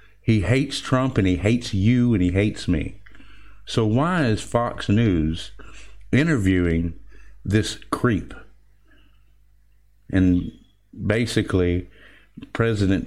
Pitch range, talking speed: 95-115 Hz, 100 wpm